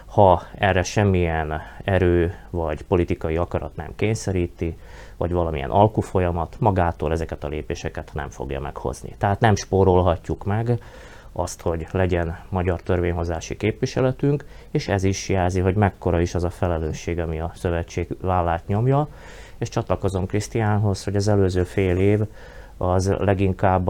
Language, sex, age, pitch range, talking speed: Hungarian, male, 30-49, 85-105 Hz, 135 wpm